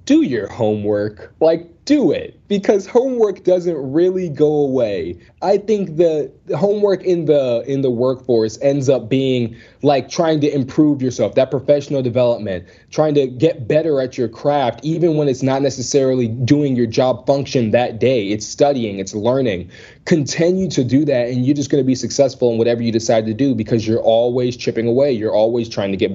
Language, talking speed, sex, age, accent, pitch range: English, 185 wpm, male, 20-39, American, 115-140 Hz